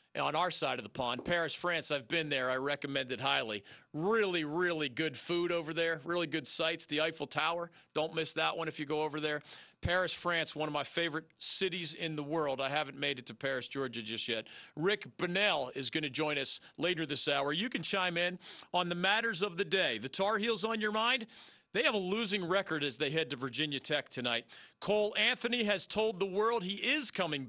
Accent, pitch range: American, 150-195 Hz